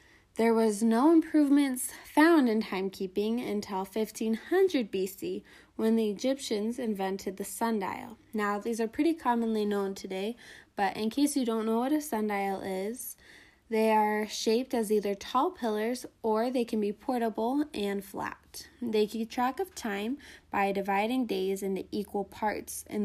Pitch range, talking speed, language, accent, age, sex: 200-240 Hz, 155 wpm, English, American, 20-39, female